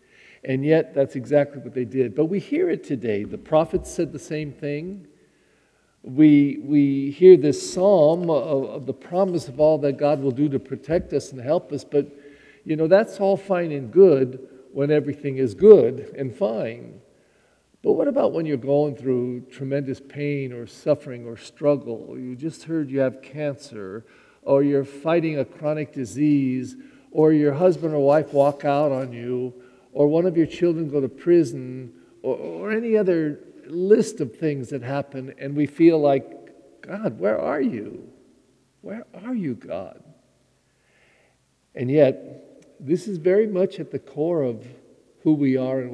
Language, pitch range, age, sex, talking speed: English, 130-160 Hz, 50-69, male, 170 wpm